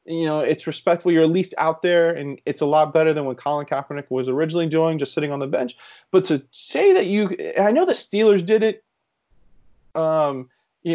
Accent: American